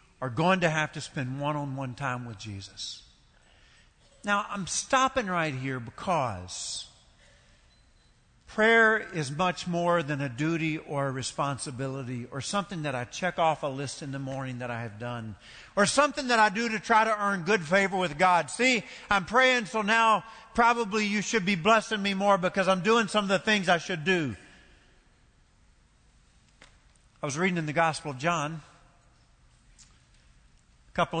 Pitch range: 125-185 Hz